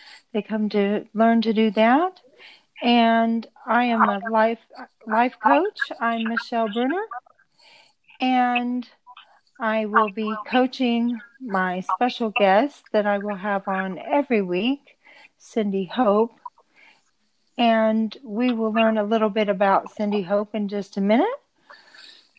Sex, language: female, English